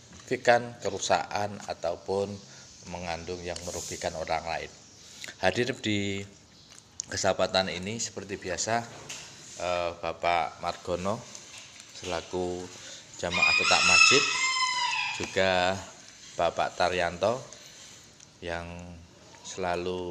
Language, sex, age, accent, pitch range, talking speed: Indonesian, male, 20-39, native, 90-105 Hz, 75 wpm